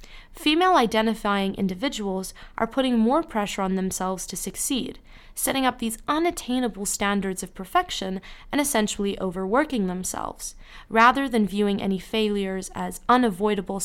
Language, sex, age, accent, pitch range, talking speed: English, female, 20-39, American, 190-245 Hz, 120 wpm